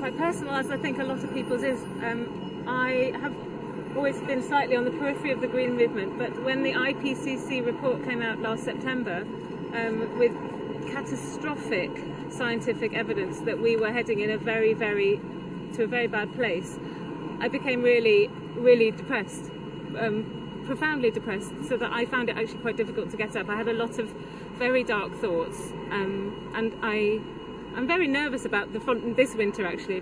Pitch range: 220-265 Hz